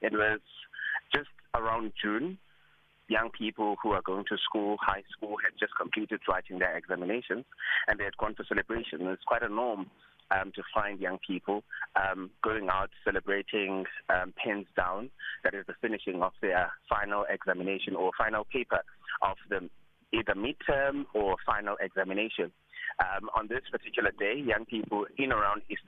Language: English